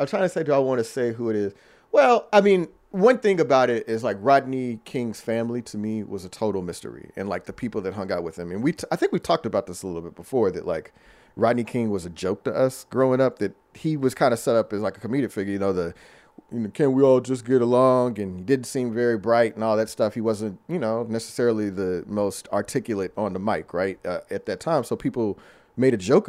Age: 40-59